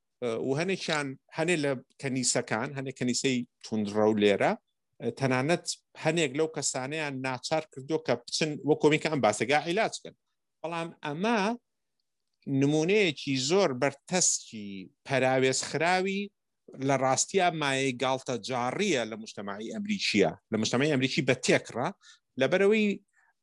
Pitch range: 125-170 Hz